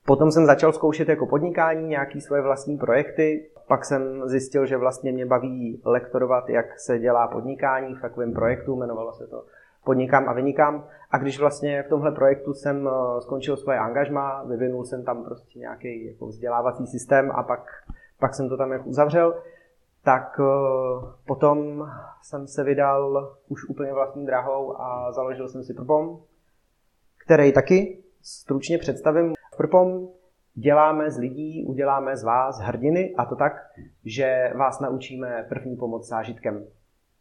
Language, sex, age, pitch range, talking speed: Czech, male, 30-49, 125-145 Hz, 150 wpm